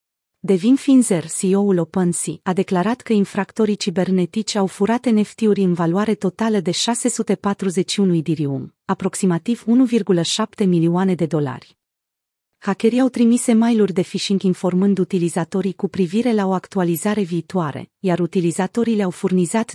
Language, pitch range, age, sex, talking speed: Romanian, 175-225 Hz, 40-59, female, 125 wpm